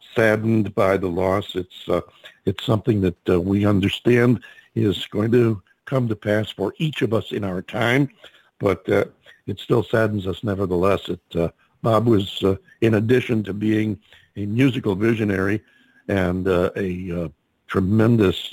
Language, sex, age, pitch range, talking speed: English, male, 60-79, 95-115 Hz, 160 wpm